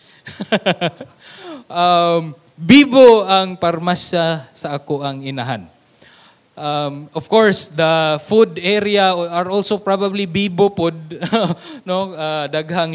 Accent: Filipino